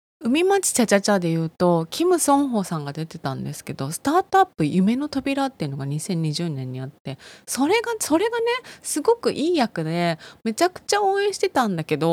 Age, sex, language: 20-39, female, Japanese